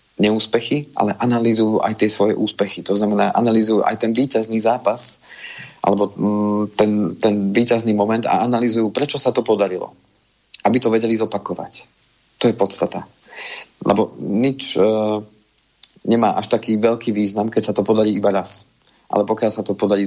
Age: 40-59